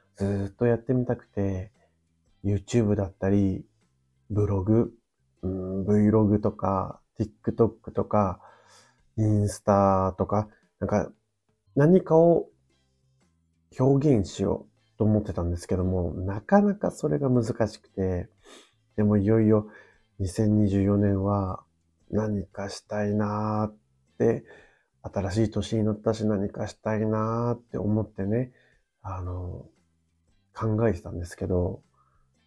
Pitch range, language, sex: 95-115 Hz, Japanese, male